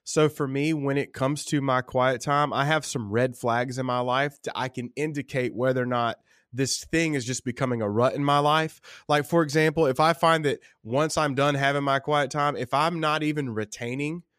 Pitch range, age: 125-150 Hz, 20-39